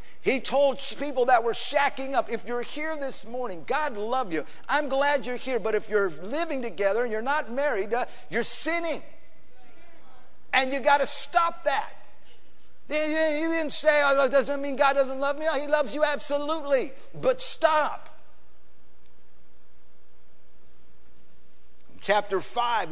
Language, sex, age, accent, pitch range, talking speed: English, male, 50-69, American, 220-290 Hz, 145 wpm